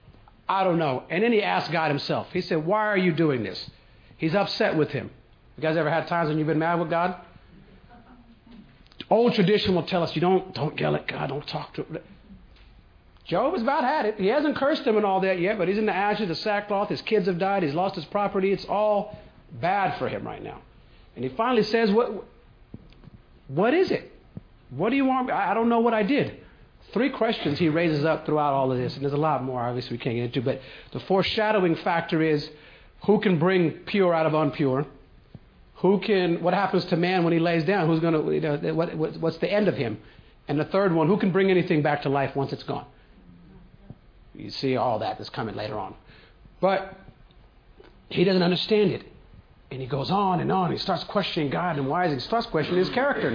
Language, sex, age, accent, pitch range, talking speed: English, male, 50-69, American, 145-195 Hz, 225 wpm